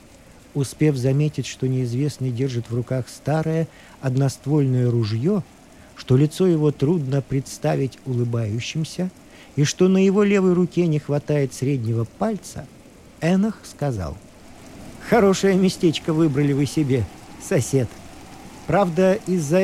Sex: male